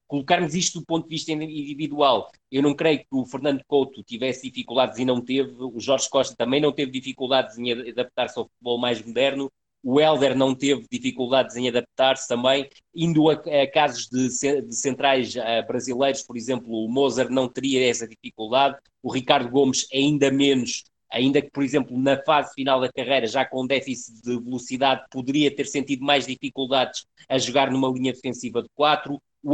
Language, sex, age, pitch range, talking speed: Portuguese, male, 20-39, 130-145 Hz, 175 wpm